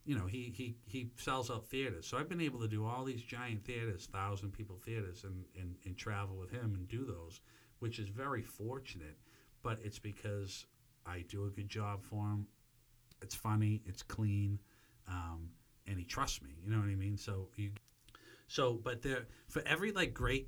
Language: English